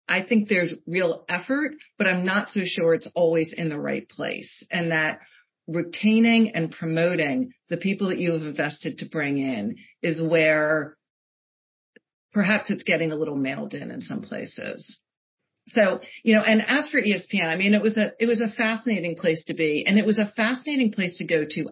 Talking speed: 195 wpm